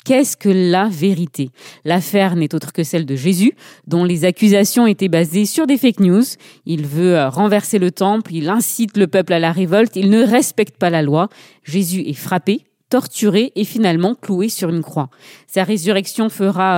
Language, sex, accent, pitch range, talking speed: French, female, French, 175-225 Hz, 180 wpm